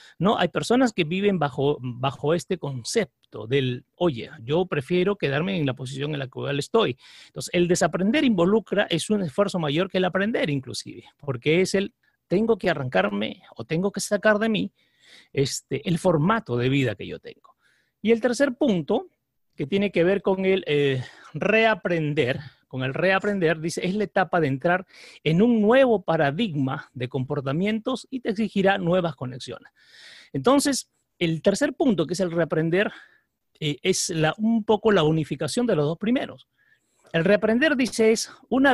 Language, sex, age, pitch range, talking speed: Spanish, male, 40-59, 150-210 Hz, 170 wpm